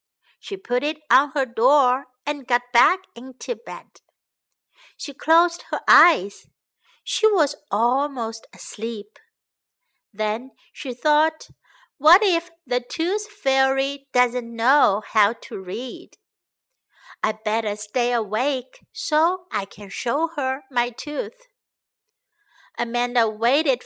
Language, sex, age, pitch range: Chinese, female, 60-79, 245-355 Hz